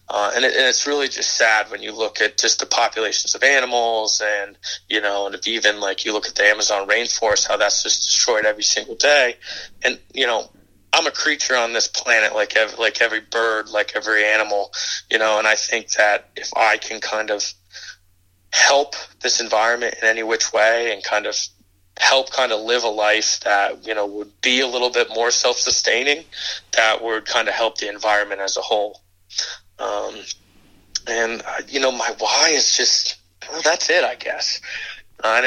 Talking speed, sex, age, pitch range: 200 wpm, male, 20-39, 105-115 Hz